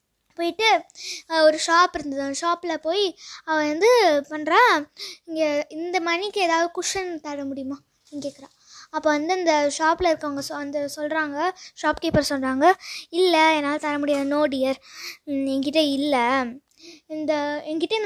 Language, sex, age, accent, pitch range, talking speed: Tamil, female, 20-39, native, 310-405 Hz, 115 wpm